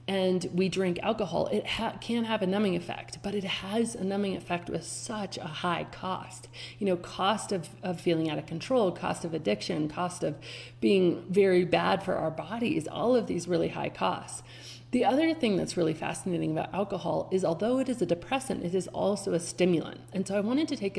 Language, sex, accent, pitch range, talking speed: English, female, American, 170-220 Hz, 210 wpm